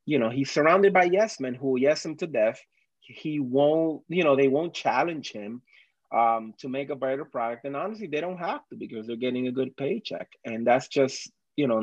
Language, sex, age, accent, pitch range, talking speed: English, male, 30-49, American, 130-160 Hz, 225 wpm